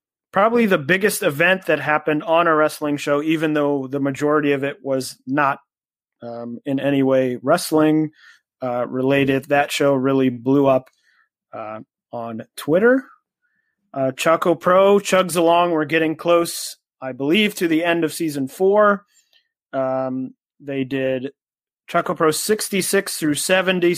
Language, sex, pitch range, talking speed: English, male, 140-180 Hz, 145 wpm